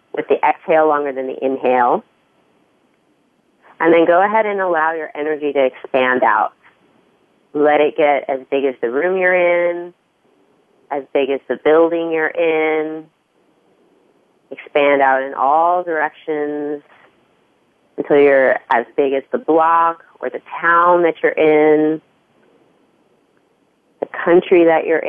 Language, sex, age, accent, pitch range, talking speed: English, female, 30-49, American, 145-165 Hz, 135 wpm